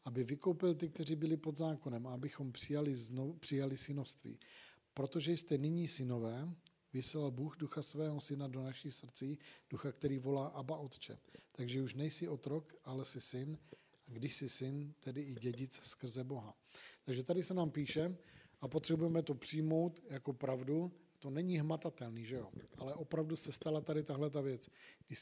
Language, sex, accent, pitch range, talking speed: Czech, male, native, 135-155 Hz, 170 wpm